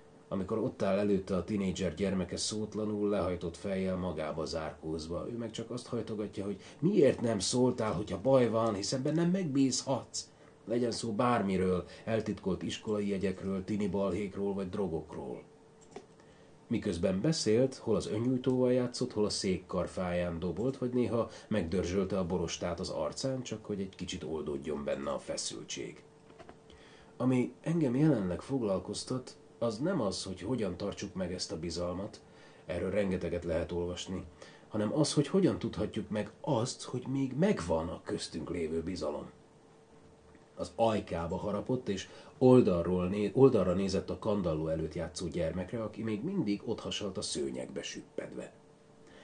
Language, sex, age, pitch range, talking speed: Hungarian, male, 30-49, 90-120 Hz, 135 wpm